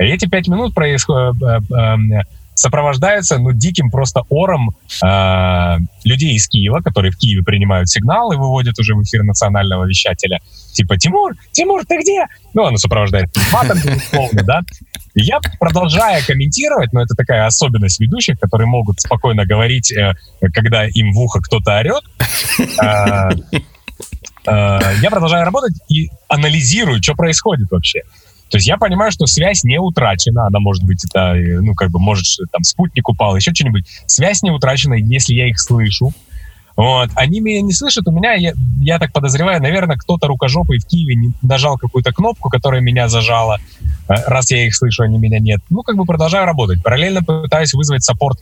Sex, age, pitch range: male, 20-39, 105-150 Hz